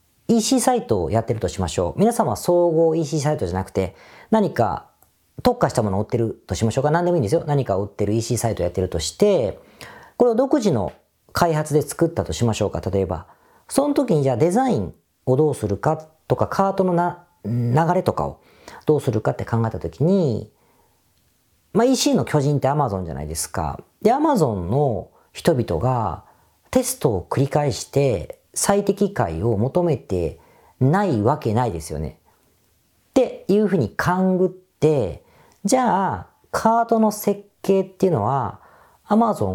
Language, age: Japanese, 40-59